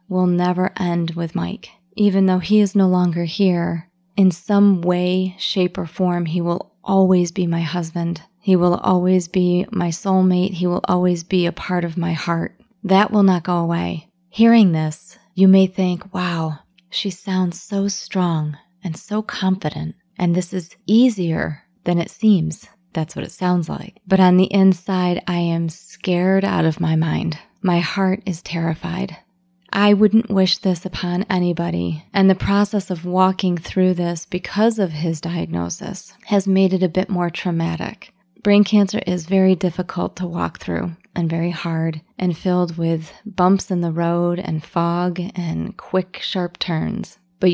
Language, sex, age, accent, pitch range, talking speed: English, female, 30-49, American, 170-190 Hz, 170 wpm